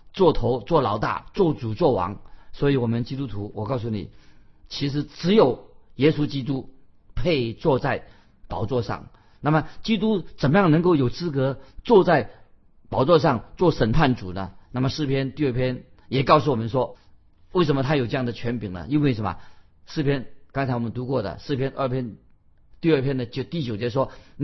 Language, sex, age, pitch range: Chinese, male, 50-69, 115-150 Hz